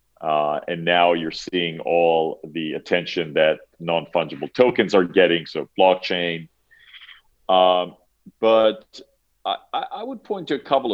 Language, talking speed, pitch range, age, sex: English, 130 wpm, 85-105 Hz, 40-59, male